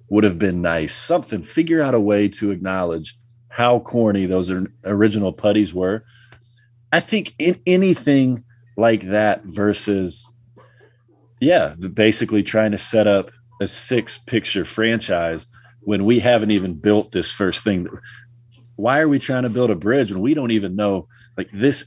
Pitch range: 100-120 Hz